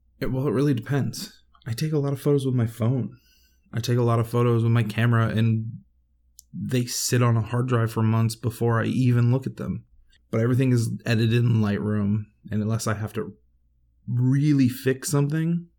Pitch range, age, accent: 95-115 Hz, 20-39, American